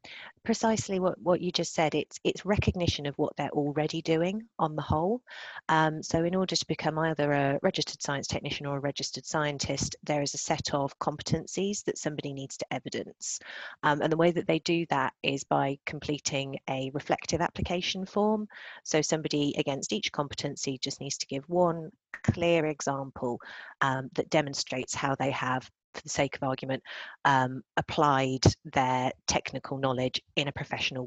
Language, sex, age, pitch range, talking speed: English, female, 30-49, 135-180 Hz, 170 wpm